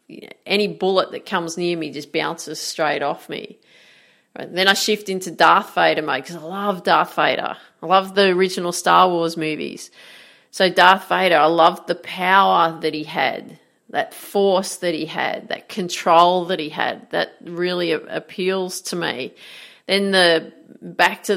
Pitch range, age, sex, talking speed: 165-195 Hz, 40-59, female, 165 wpm